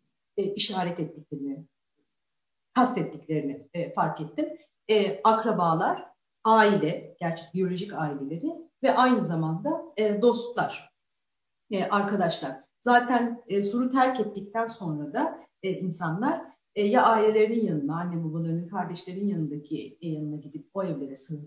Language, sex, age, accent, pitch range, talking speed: Turkish, female, 40-59, native, 160-225 Hz, 115 wpm